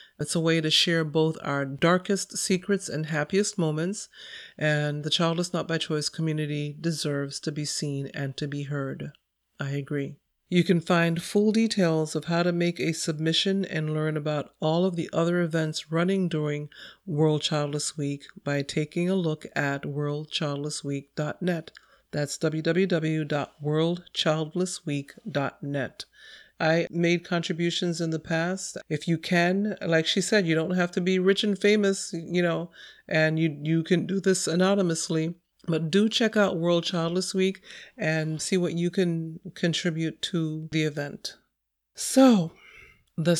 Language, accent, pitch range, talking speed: English, American, 150-185 Hz, 150 wpm